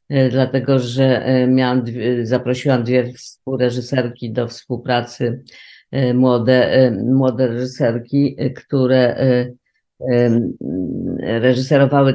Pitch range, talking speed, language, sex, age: 120-135 Hz, 60 wpm, Polish, female, 50-69